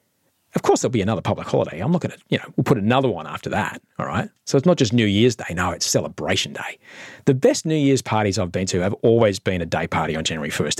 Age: 40-59